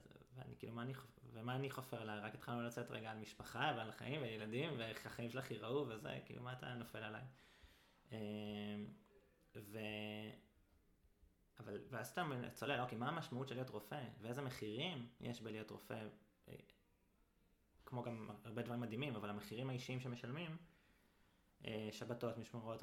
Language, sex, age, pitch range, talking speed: Hebrew, male, 20-39, 105-125 Hz, 140 wpm